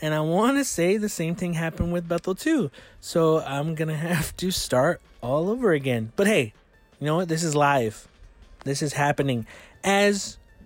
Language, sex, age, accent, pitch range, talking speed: English, male, 30-49, American, 135-185 Hz, 180 wpm